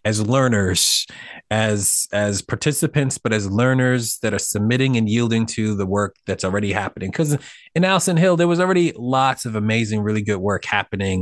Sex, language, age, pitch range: male, English, 30-49, 100-125 Hz